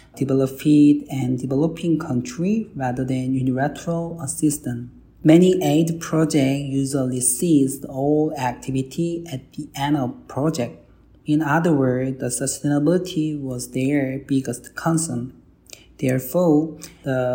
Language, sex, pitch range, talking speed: English, male, 130-160 Hz, 105 wpm